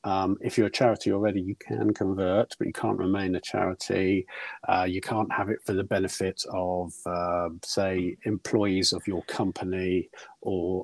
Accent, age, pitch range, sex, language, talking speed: British, 50-69, 95-115 Hz, male, English, 170 wpm